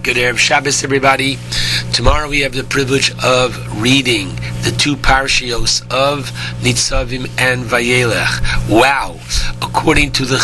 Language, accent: English, American